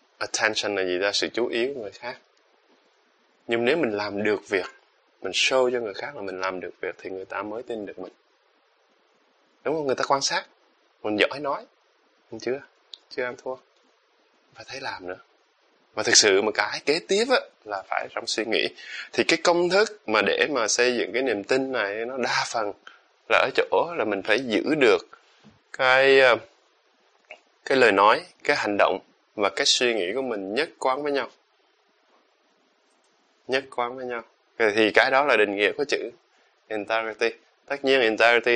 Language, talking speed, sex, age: Vietnamese, 185 wpm, male, 20-39